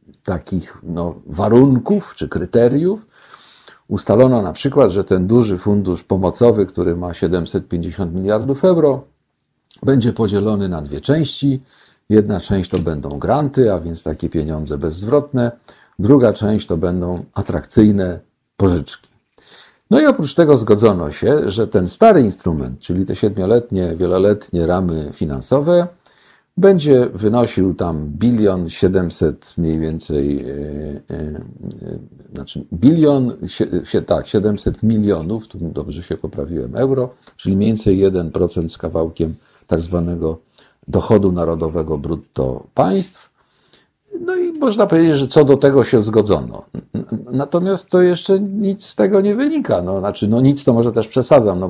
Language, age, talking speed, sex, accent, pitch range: Polish, 50-69, 135 wpm, male, native, 85-135 Hz